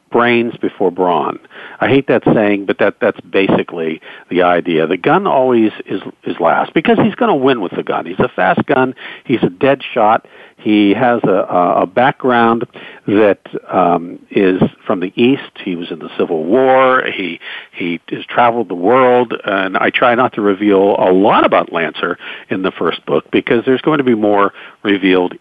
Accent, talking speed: American, 185 wpm